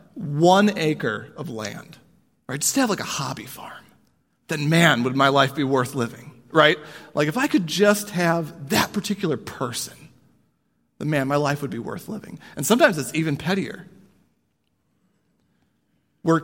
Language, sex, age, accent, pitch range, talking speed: English, male, 40-59, American, 125-160 Hz, 160 wpm